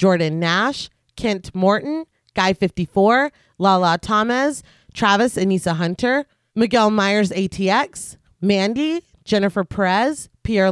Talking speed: 95 wpm